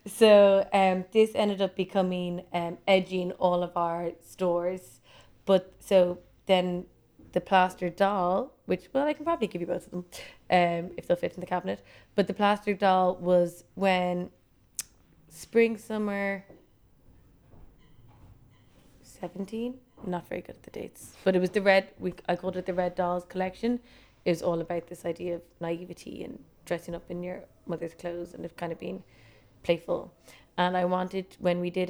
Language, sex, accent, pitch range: English, female, Irish, 170-185 Hz